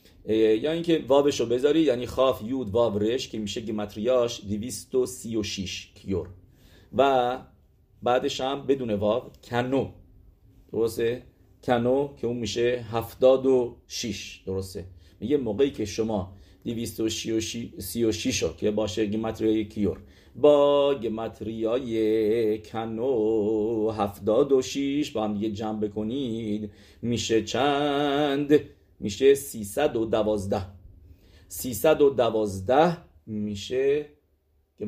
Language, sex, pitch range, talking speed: English, male, 100-125 Hz, 100 wpm